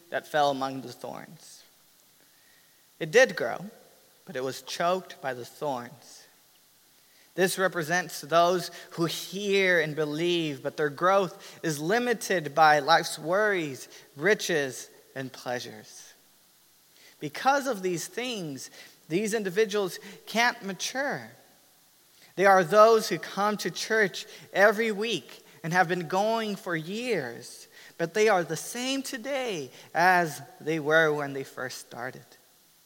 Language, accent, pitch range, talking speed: English, American, 155-210 Hz, 125 wpm